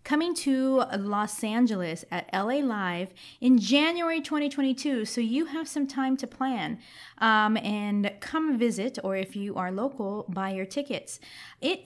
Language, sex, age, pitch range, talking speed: English, female, 20-39, 195-265 Hz, 150 wpm